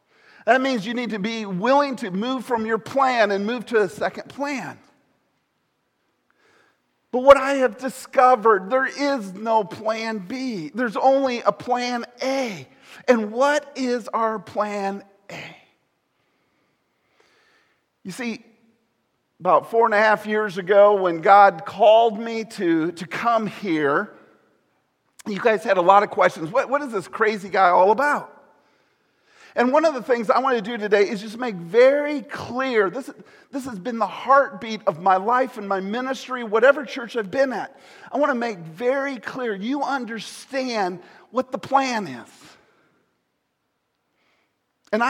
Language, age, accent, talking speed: English, 50-69, American, 155 wpm